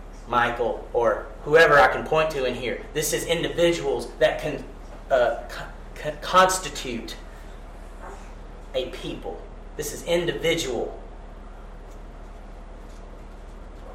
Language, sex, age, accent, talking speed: English, male, 30-49, American, 90 wpm